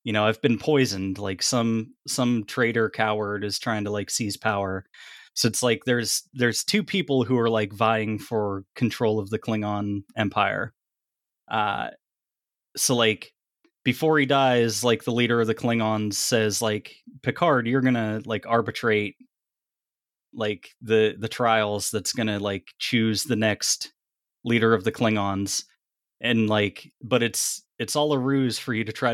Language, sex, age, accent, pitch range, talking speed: English, male, 20-39, American, 110-130 Hz, 165 wpm